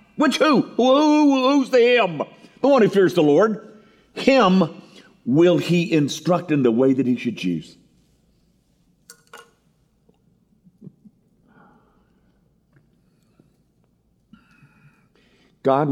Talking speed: 85 wpm